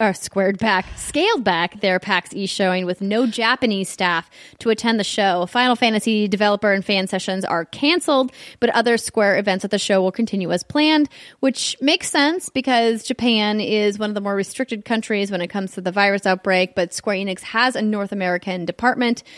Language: English